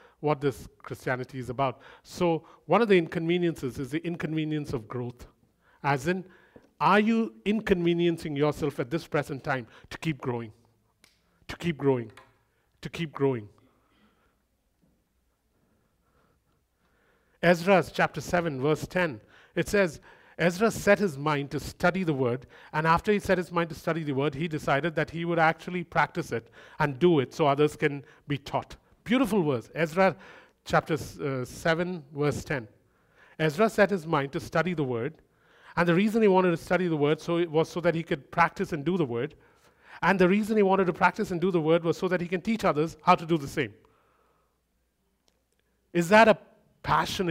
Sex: male